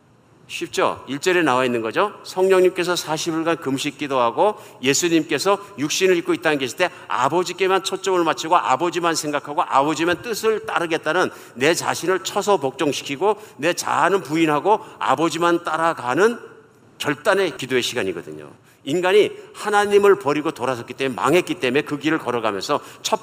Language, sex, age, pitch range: Korean, male, 50-69, 130-180 Hz